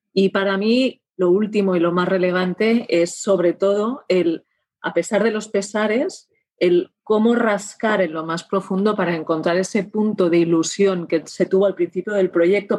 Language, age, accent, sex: Spanish, 30-49, Spanish, female